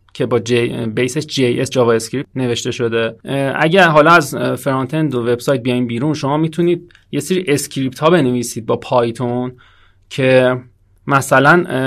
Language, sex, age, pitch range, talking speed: Persian, male, 30-49, 125-160 Hz, 150 wpm